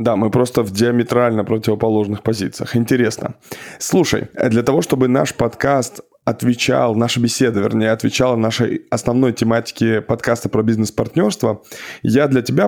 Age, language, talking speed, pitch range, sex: 20-39, Russian, 135 wpm, 110-130 Hz, male